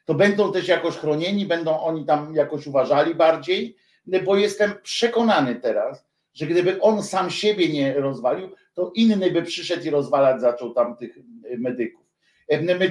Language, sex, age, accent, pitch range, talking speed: Polish, male, 50-69, native, 150-215 Hz, 155 wpm